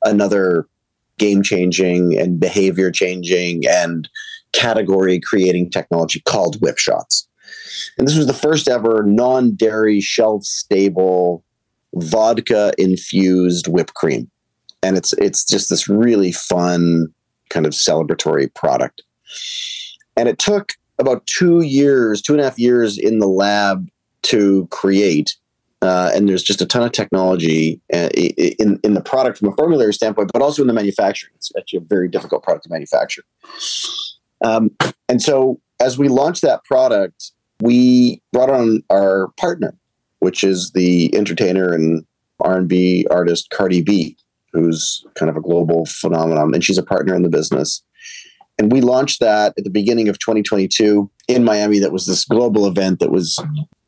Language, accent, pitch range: English, American, 90-125 Hz